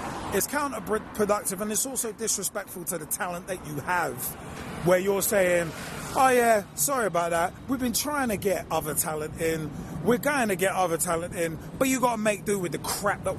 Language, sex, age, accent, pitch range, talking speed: English, male, 30-49, British, 170-220 Hz, 200 wpm